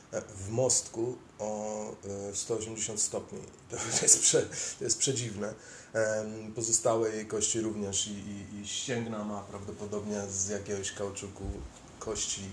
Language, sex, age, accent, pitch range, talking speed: Polish, male, 30-49, native, 95-110 Hz, 110 wpm